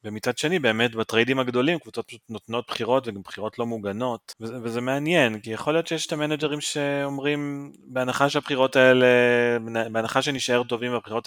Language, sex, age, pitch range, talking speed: Hebrew, male, 20-39, 110-140 Hz, 160 wpm